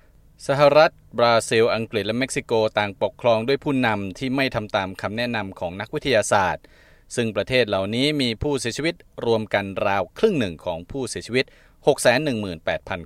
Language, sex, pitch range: Thai, male, 95-135 Hz